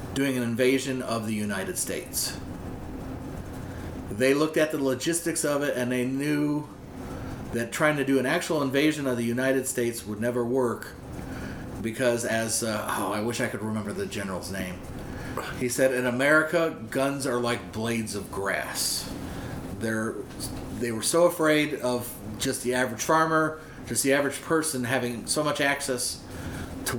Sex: male